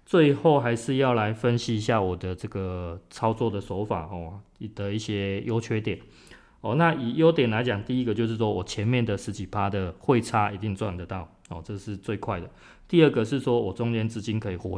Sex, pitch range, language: male, 95-115 Hz, Chinese